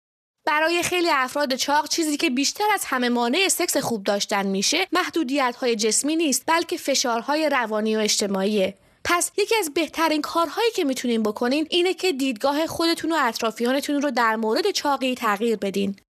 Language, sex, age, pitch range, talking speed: English, female, 20-39, 240-330 Hz, 160 wpm